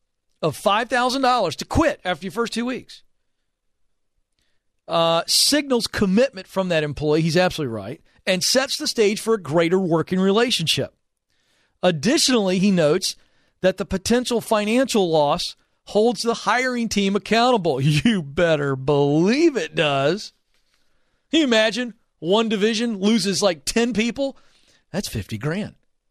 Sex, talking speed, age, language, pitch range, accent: male, 130 wpm, 40-59, English, 155-220 Hz, American